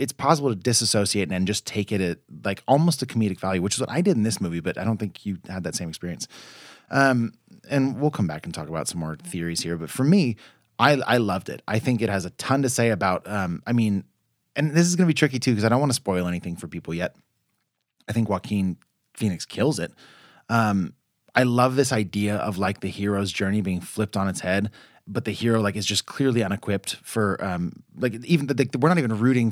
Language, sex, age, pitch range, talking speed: English, male, 30-49, 95-120 Hz, 240 wpm